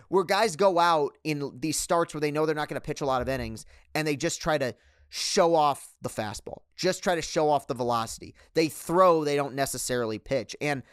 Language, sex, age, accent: English, male, 30-49, American